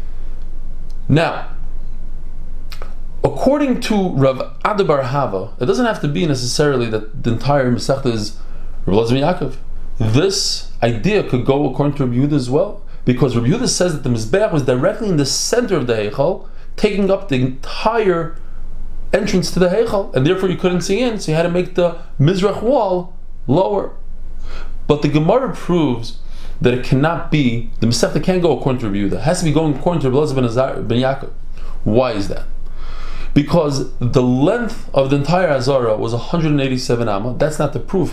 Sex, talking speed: male, 175 wpm